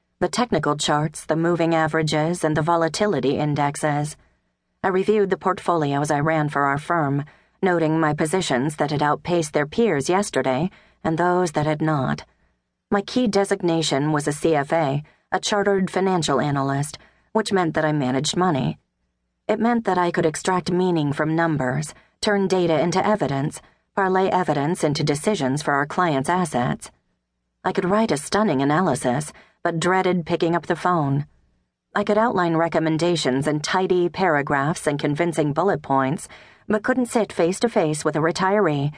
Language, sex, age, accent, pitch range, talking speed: English, female, 30-49, American, 145-185 Hz, 155 wpm